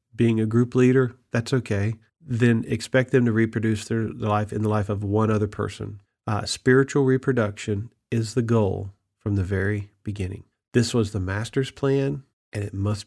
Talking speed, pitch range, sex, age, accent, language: 175 wpm, 110-140 Hz, male, 40-59, American, English